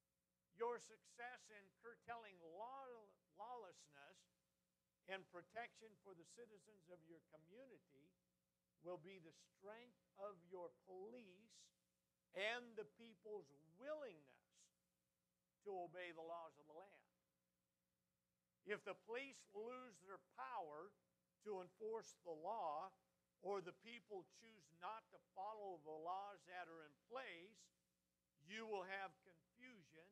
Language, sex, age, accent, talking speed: English, male, 60-79, American, 115 wpm